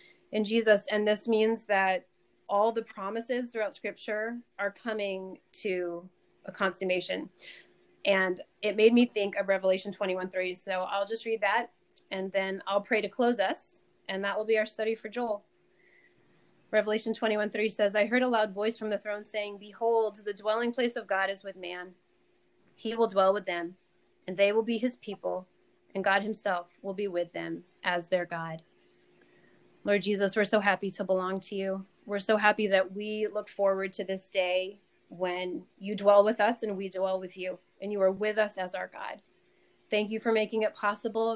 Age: 20-39